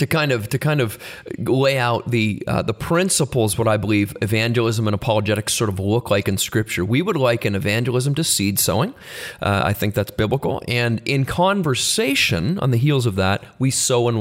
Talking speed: 200 wpm